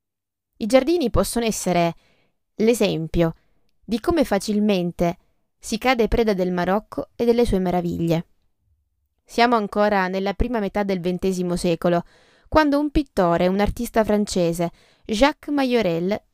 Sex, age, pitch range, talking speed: female, 20-39, 175-230 Hz, 125 wpm